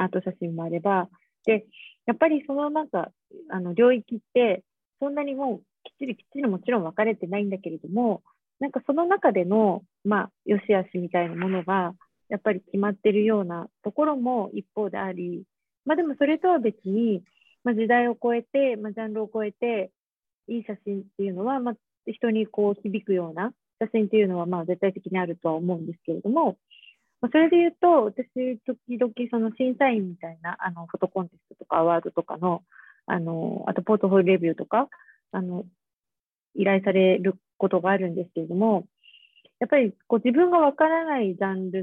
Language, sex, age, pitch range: Japanese, female, 40-59, 185-240 Hz